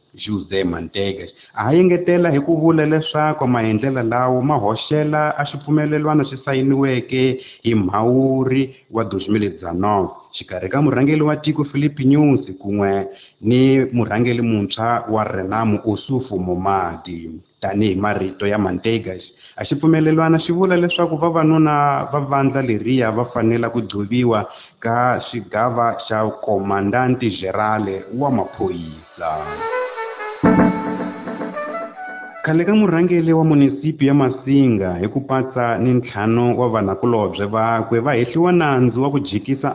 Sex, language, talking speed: male, Portuguese, 110 wpm